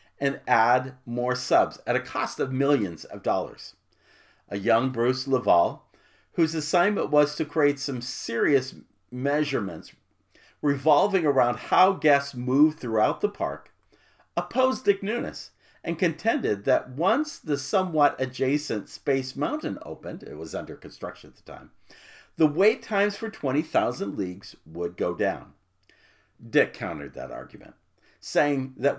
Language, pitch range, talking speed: English, 130-170 Hz, 135 wpm